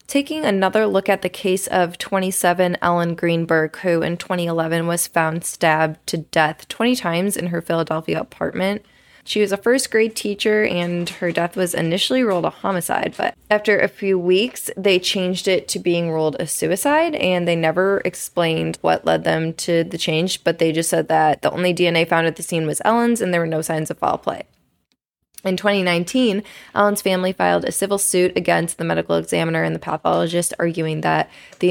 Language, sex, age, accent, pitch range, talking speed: English, female, 20-39, American, 160-195 Hz, 190 wpm